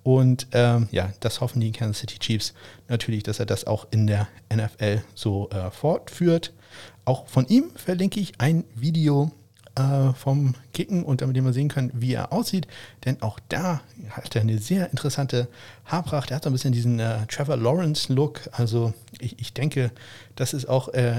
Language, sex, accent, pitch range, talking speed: German, male, German, 110-140 Hz, 180 wpm